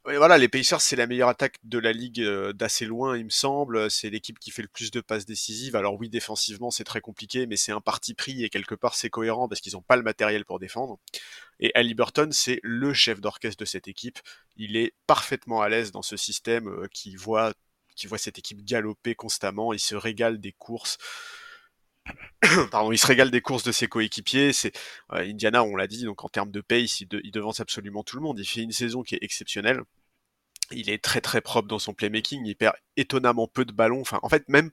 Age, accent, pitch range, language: 30-49, French, 105-120 Hz, French